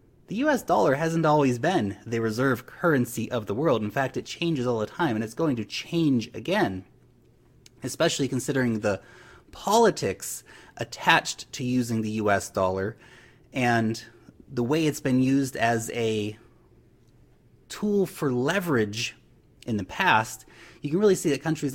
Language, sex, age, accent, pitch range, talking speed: English, male, 30-49, American, 110-140 Hz, 150 wpm